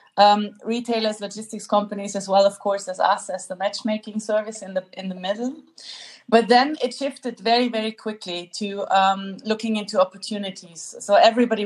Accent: German